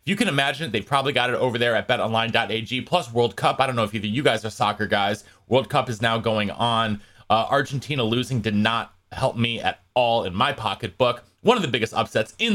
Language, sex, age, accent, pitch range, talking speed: English, male, 30-49, American, 110-145 Hz, 240 wpm